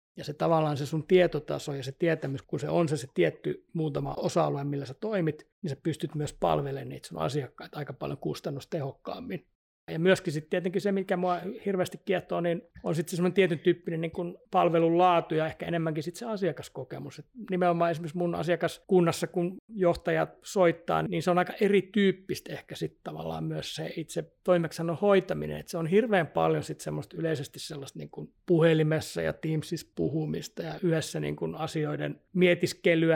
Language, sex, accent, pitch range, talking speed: Finnish, male, native, 150-180 Hz, 175 wpm